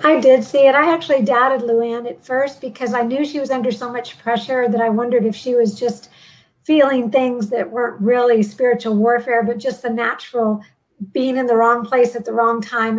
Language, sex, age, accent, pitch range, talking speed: English, female, 50-69, American, 225-260 Hz, 210 wpm